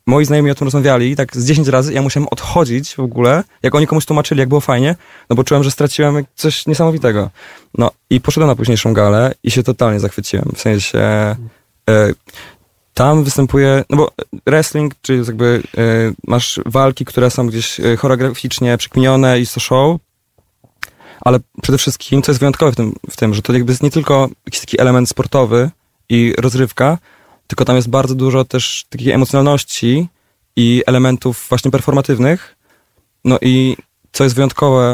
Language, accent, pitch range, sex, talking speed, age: Polish, native, 115-135 Hz, male, 170 wpm, 20-39